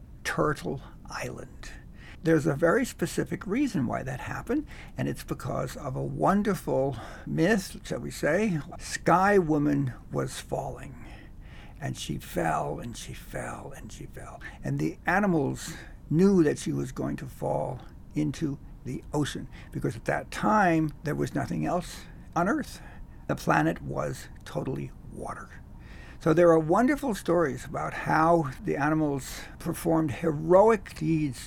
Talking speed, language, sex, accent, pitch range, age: 140 wpm, English, male, American, 130-170 Hz, 60-79